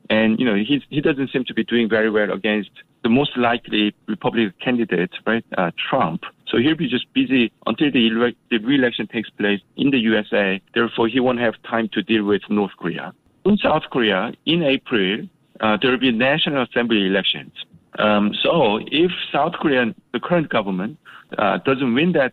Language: English